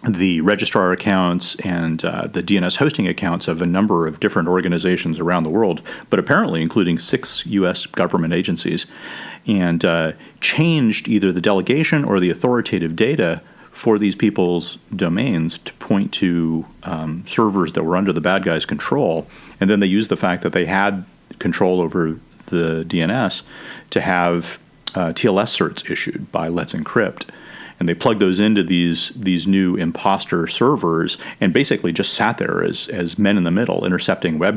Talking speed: 165 wpm